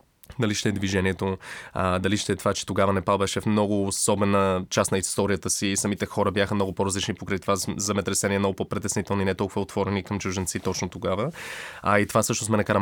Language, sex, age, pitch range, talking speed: Bulgarian, male, 20-39, 95-110 Hz, 205 wpm